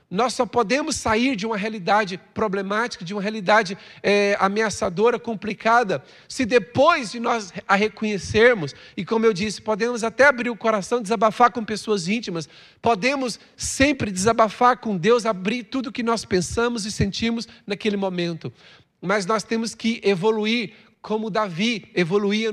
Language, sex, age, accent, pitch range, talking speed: Portuguese, male, 40-59, Brazilian, 195-280 Hz, 145 wpm